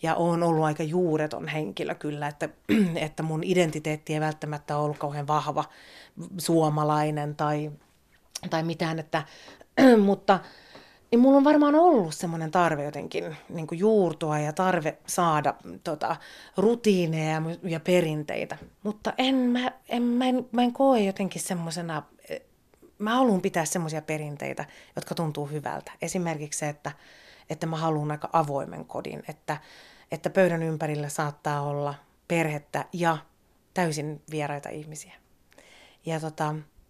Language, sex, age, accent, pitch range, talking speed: Finnish, female, 30-49, native, 150-180 Hz, 125 wpm